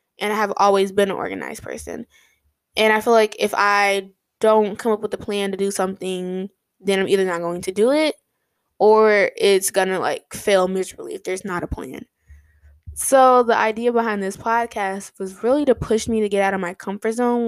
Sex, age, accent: female, 10-29, American